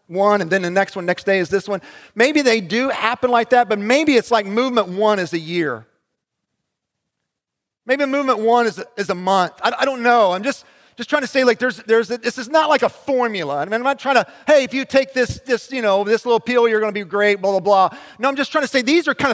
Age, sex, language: 40-59, male, English